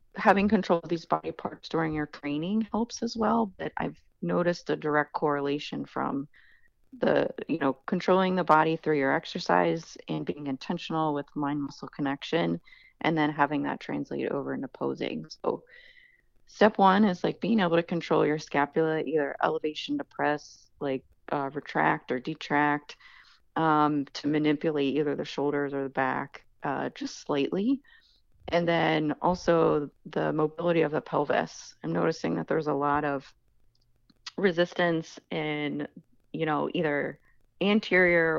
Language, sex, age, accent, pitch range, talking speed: English, female, 30-49, American, 145-180 Hz, 150 wpm